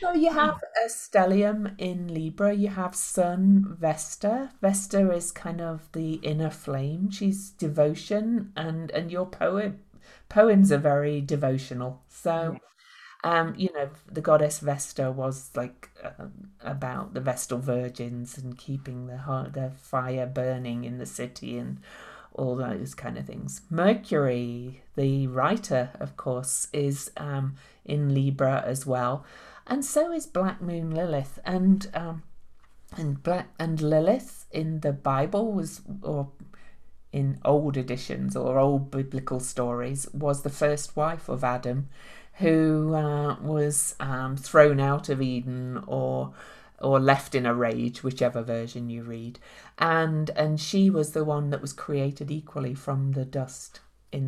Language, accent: English, British